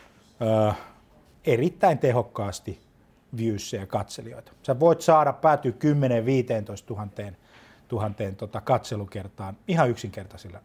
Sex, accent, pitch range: male, native, 105-130 Hz